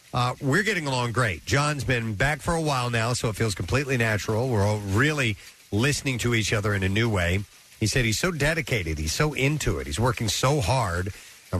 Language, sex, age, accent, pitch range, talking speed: English, male, 50-69, American, 105-145 Hz, 215 wpm